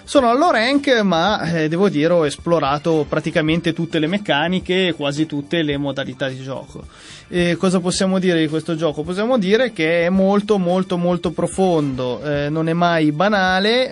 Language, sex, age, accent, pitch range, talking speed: Italian, male, 20-39, native, 150-180 Hz, 170 wpm